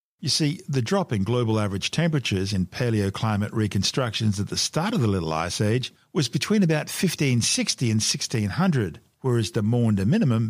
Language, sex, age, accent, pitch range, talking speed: English, male, 50-69, Australian, 105-145 Hz, 165 wpm